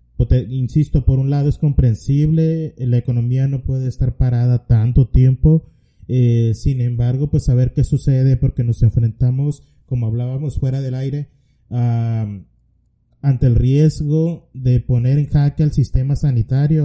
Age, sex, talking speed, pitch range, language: 30-49, male, 145 wpm, 125-145 Hz, Spanish